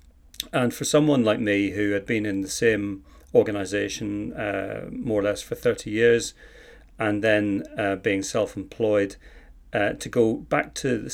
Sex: male